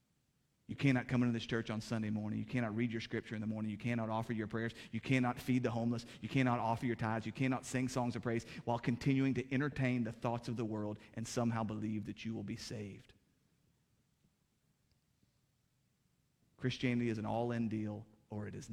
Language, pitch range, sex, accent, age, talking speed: English, 110-125 Hz, male, American, 30-49, 200 wpm